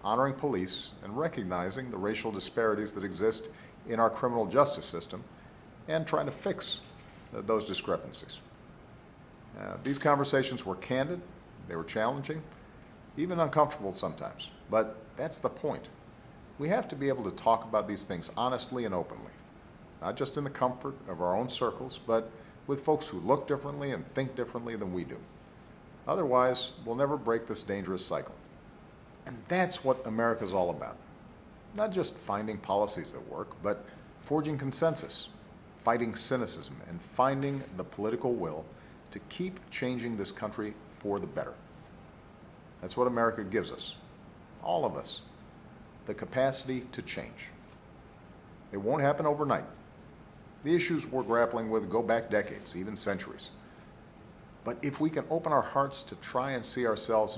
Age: 50-69